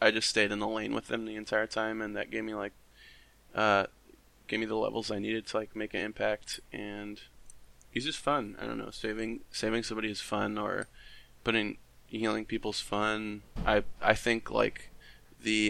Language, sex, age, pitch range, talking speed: English, male, 20-39, 105-115 Hz, 190 wpm